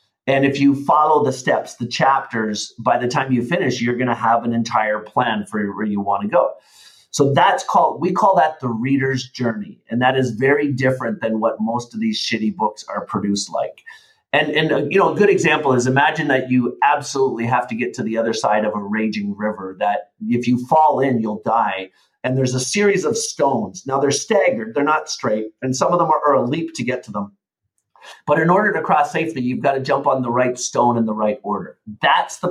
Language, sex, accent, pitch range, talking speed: English, male, American, 115-145 Hz, 230 wpm